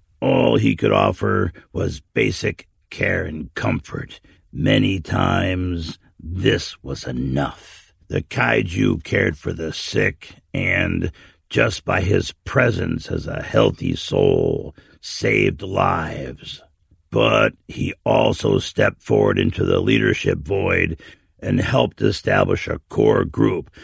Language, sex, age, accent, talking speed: English, male, 60-79, American, 115 wpm